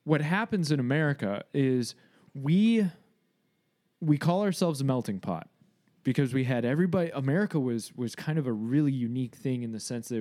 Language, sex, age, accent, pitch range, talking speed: English, male, 20-39, American, 110-155 Hz, 170 wpm